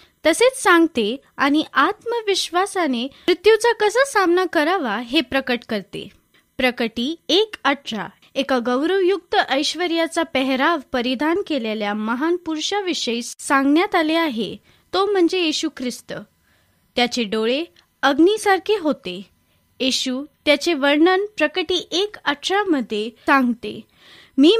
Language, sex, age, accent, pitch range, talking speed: Marathi, female, 20-39, native, 255-365 Hz, 95 wpm